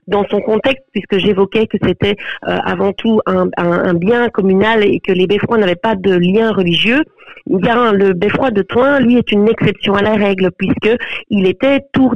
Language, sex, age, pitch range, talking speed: French, female, 40-59, 190-230 Hz, 210 wpm